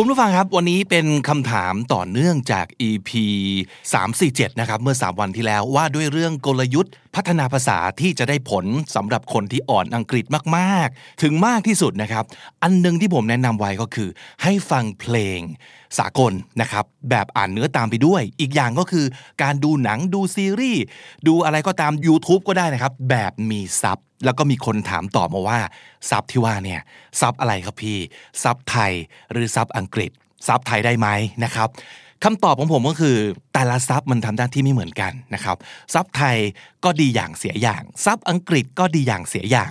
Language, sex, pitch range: Thai, male, 110-165 Hz